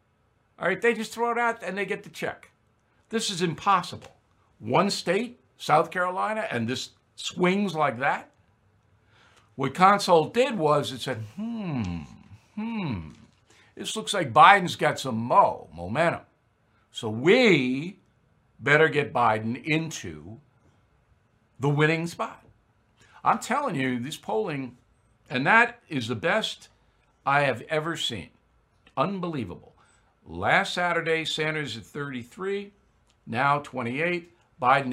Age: 60-79